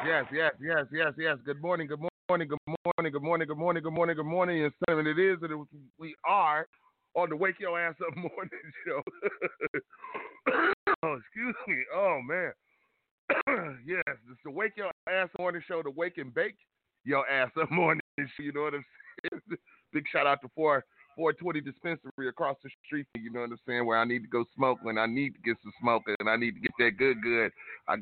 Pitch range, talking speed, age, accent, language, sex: 115-165 Hz, 215 wpm, 30-49, American, English, male